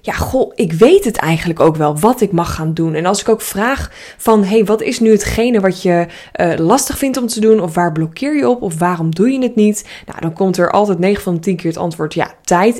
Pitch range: 175-225 Hz